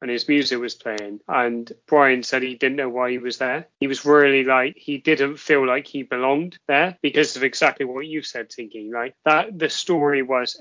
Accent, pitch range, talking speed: British, 125-155 Hz, 220 wpm